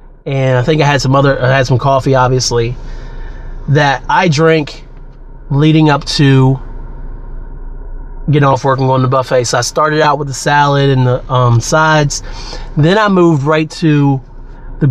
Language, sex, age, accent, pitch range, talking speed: English, male, 30-49, American, 130-150 Hz, 165 wpm